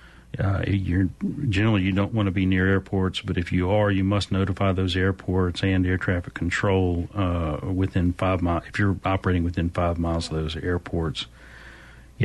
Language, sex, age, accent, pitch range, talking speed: English, male, 40-59, American, 85-100 Hz, 175 wpm